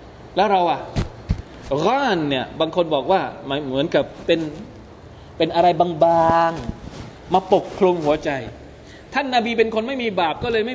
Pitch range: 145-210 Hz